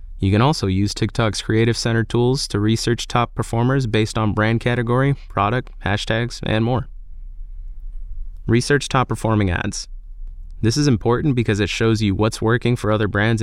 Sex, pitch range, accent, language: male, 100-120 Hz, American, English